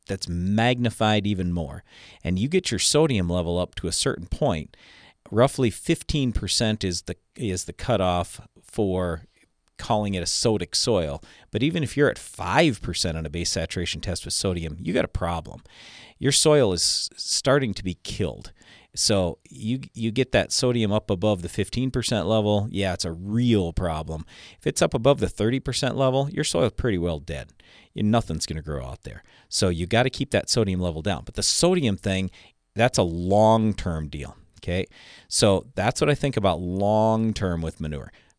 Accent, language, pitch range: American, English, 90-120 Hz